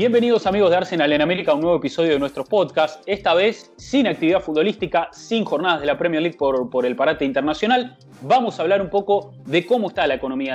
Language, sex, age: English, male, 30-49